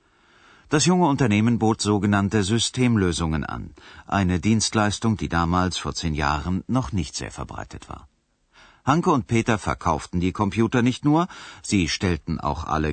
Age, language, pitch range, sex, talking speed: 50-69, Urdu, 85-120 Hz, male, 145 wpm